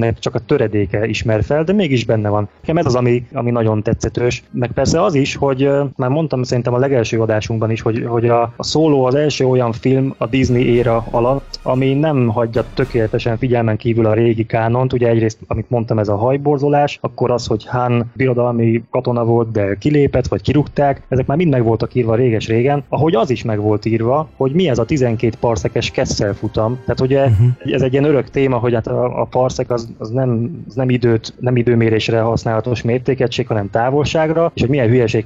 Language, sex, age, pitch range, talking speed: Hungarian, male, 20-39, 115-135 Hz, 195 wpm